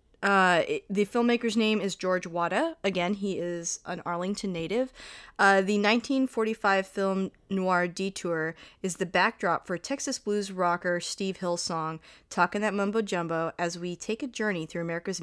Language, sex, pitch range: English, female, 175-215 Hz